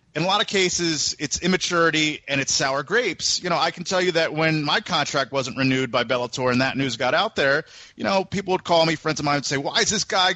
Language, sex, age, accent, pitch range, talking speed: English, male, 30-49, American, 140-180 Hz, 265 wpm